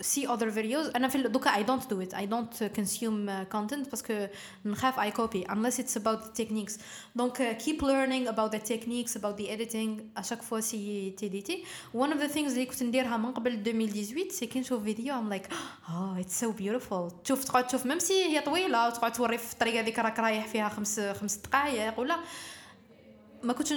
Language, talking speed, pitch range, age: Arabic, 150 wpm, 220-275 Hz, 20-39